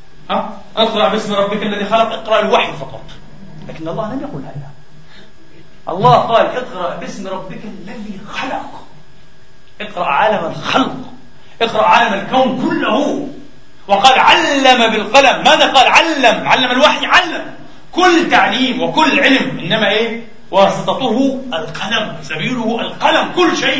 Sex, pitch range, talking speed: male, 195-260 Hz, 120 wpm